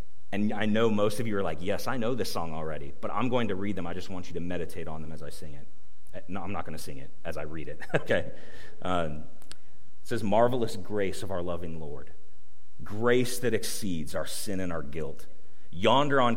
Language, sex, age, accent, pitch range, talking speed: English, male, 40-59, American, 90-120 Hz, 230 wpm